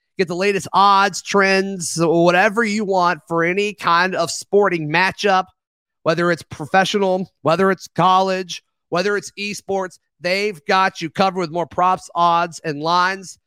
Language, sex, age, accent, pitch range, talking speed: English, male, 30-49, American, 170-205 Hz, 150 wpm